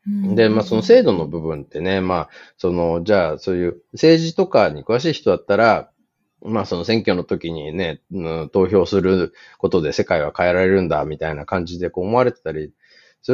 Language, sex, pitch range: Japanese, male, 85-145 Hz